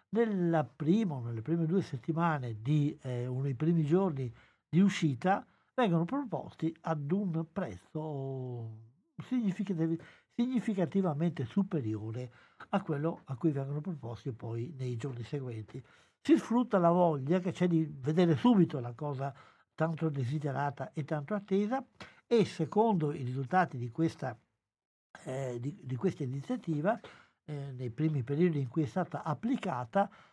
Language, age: Italian, 60-79